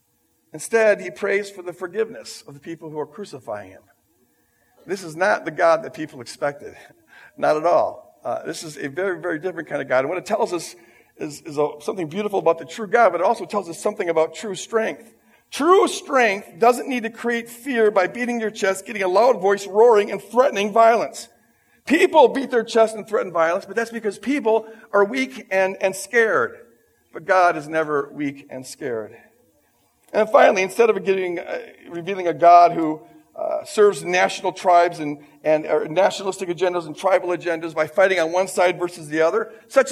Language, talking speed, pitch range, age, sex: English, 190 wpm, 175-225 Hz, 50-69, male